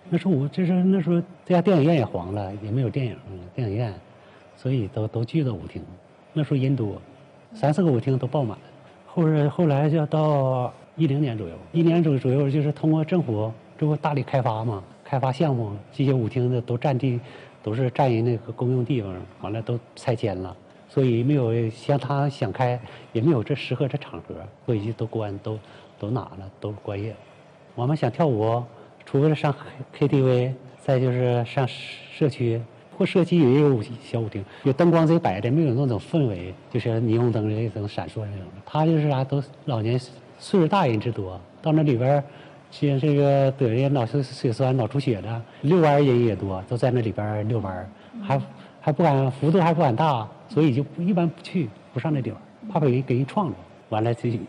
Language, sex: Chinese, male